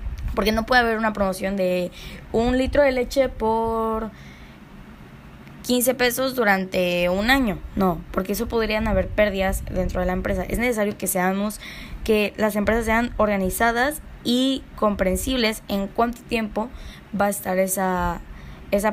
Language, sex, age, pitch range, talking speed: Spanish, female, 10-29, 190-245 Hz, 145 wpm